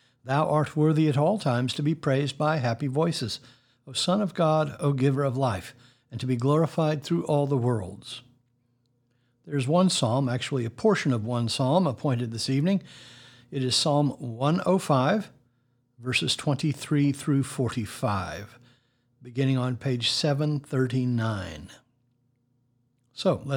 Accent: American